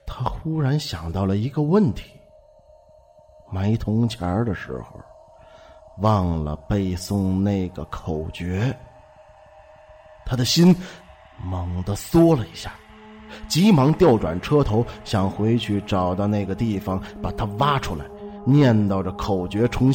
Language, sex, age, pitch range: Chinese, male, 30-49, 90-120 Hz